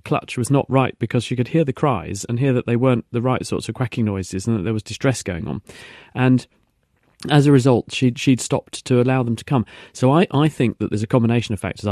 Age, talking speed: 40-59, 250 wpm